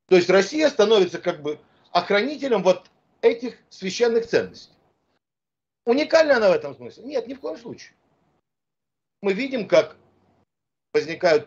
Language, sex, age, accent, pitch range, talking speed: Russian, male, 50-69, native, 135-205 Hz, 130 wpm